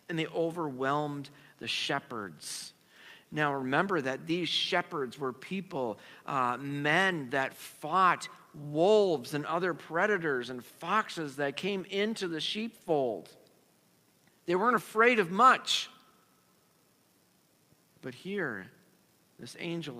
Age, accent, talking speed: 50-69, American, 110 wpm